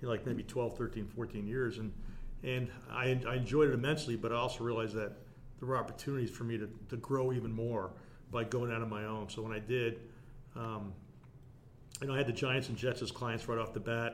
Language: English